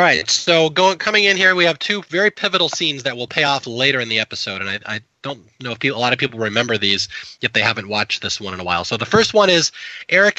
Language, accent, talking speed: English, American, 285 wpm